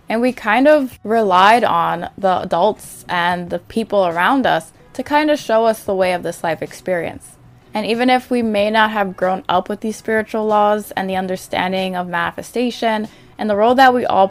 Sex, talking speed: female, 200 wpm